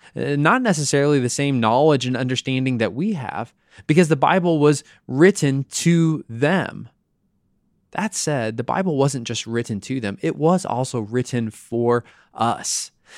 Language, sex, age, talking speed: English, male, 20-39, 145 wpm